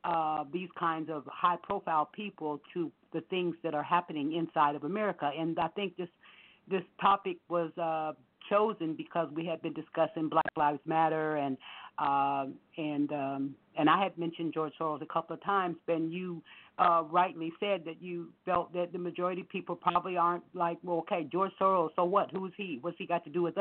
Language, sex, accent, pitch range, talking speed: English, female, American, 155-180 Hz, 195 wpm